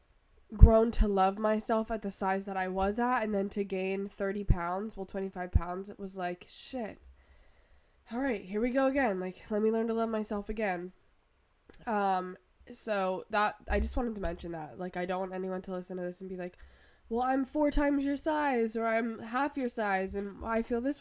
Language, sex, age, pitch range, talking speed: English, female, 20-39, 185-230 Hz, 210 wpm